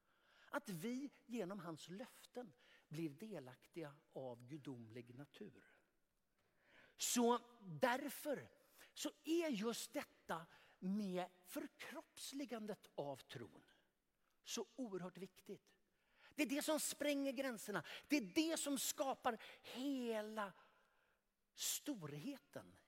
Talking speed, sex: 90 wpm, male